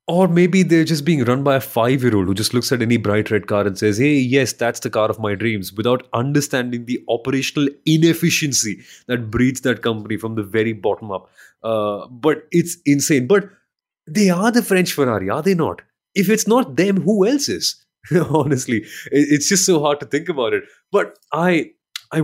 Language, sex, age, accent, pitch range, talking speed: English, male, 30-49, Indian, 115-170 Hz, 195 wpm